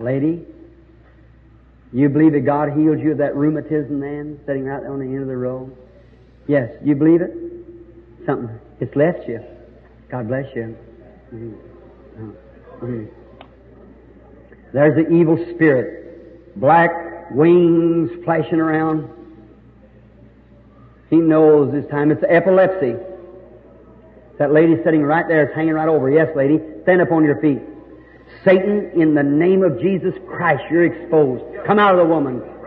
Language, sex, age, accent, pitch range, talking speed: English, male, 50-69, American, 130-170 Hz, 145 wpm